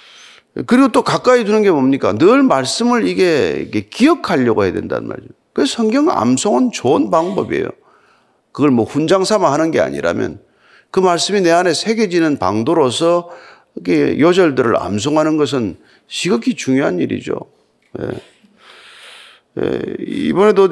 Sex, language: male, Korean